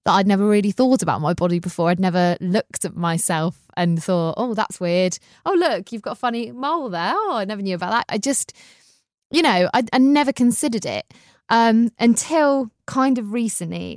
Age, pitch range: 20-39, 180-230 Hz